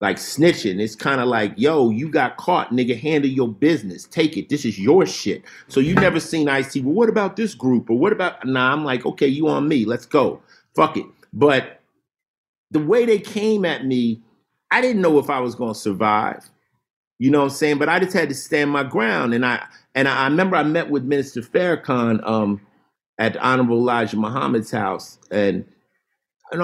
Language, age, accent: English, 50-69, American